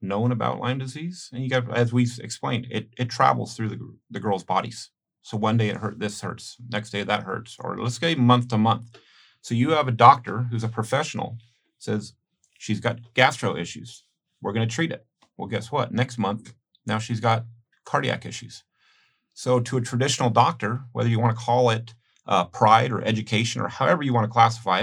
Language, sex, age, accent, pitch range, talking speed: English, male, 40-59, American, 110-125 Hz, 205 wpm